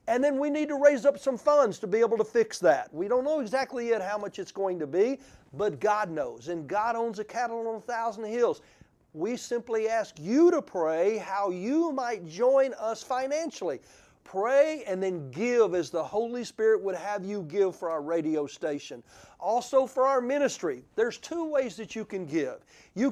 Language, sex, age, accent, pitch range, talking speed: English, male, 40-59, American, 170-240 Hz, 200 wpm